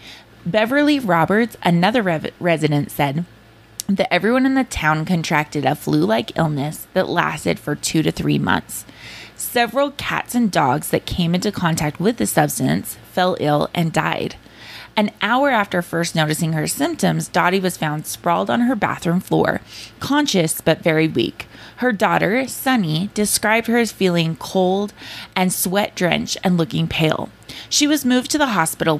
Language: English